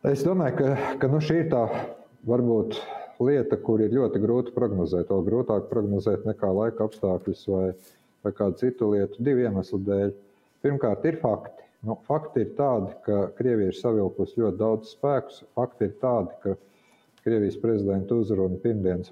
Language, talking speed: English, 150 wpm